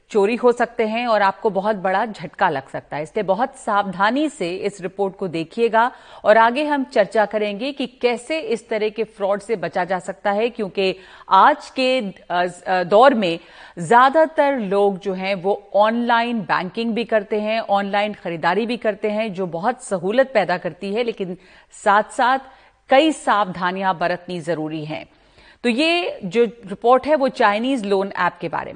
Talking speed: 170 wpm